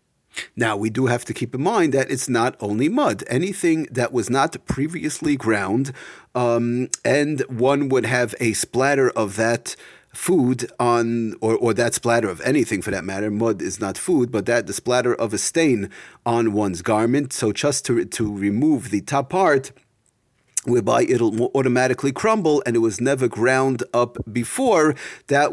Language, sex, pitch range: English, male, 115-145 Hz